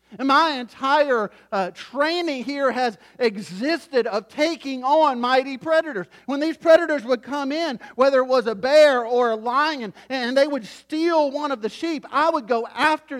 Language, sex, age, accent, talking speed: English, male, 40-59, American, 175 wpm